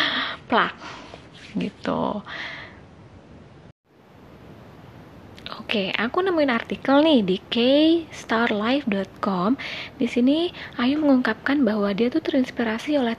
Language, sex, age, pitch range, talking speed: Indonesian, female, 20-39, 210-255 Hz, 85 wpm